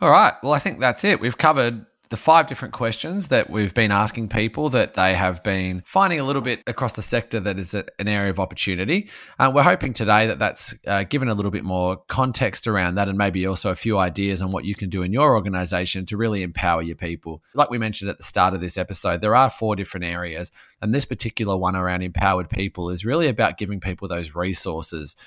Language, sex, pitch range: English, male, 90-110 Hz